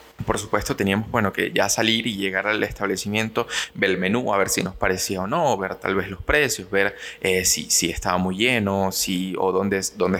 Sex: male